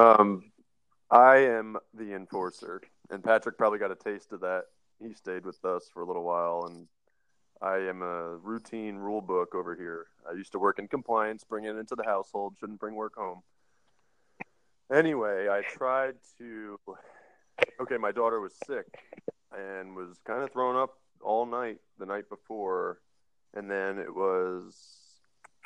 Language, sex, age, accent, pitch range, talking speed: English, male, 20-39, American, 95-115 Hz, 160 wpm